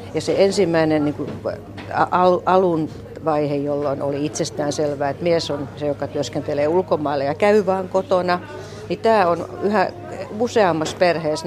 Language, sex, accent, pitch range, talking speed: Finnish, female, native, 150-195 Hz, 145 wpm